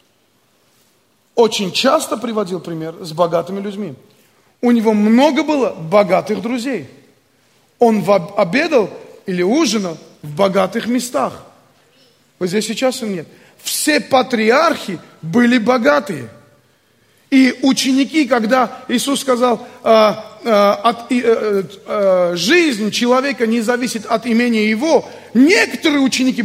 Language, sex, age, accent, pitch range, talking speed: Russian, male, 30-49, native, 195-260 Hz, 100 wpm